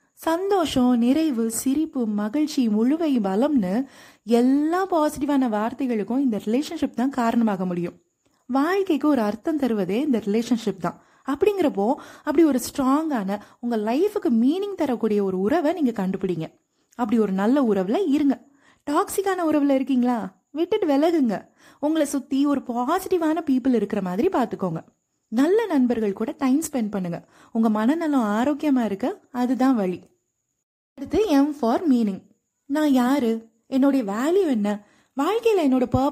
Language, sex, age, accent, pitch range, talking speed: Tamil, female, 30-49, native, 220-290 Hz, 105 wpm